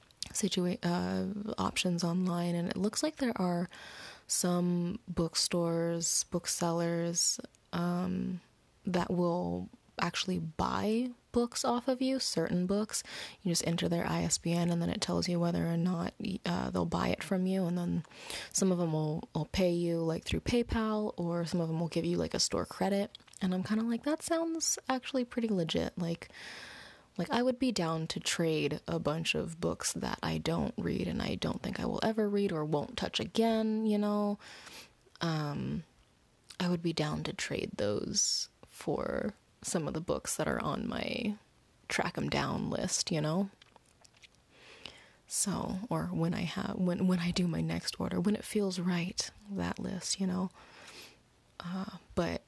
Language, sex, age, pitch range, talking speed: English, female, 20-39, 170-205 Hz, 170 wpm